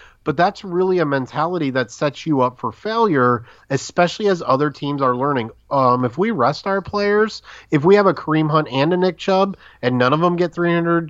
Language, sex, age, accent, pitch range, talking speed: English, male, 30-49, American, 120-165 Hz, 210 wpm